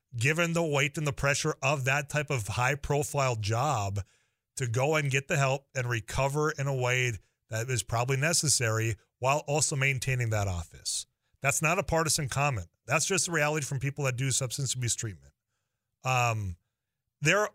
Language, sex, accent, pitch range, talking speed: English, male, American, 115-155 Hz, 170 wpm